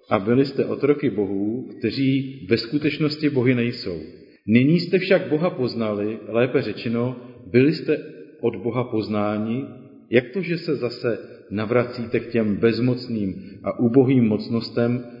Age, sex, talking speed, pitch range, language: 40-59, male, 135 wpm, 110-140 Hz, Czech